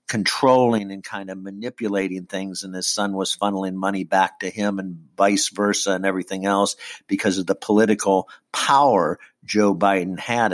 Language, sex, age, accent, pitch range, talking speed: English, male, 50-69, American, 90-105 Hz, 165 wpm